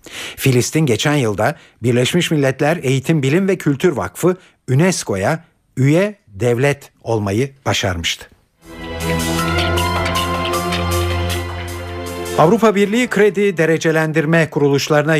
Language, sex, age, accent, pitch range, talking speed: Turkish, male, 50-69, native, 115-160 Hz, 80 wpm